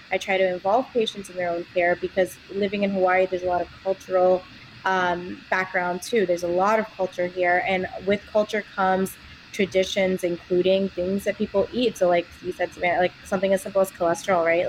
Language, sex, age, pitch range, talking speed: English, female, 20-39, 180-215 Hz, 200 wpm